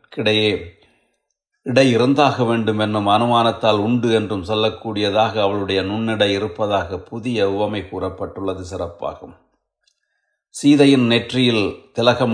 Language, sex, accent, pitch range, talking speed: Tamil, male, native, 105-120 Hz, 90 wpm